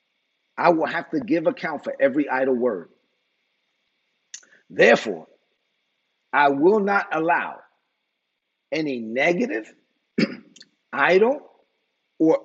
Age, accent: 50-69, American